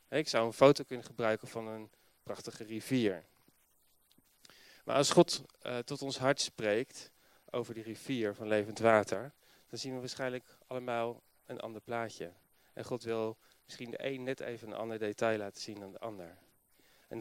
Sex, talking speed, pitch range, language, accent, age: male, 170 wpm, 105-130 Hz, Dutch, Dutch, 30-49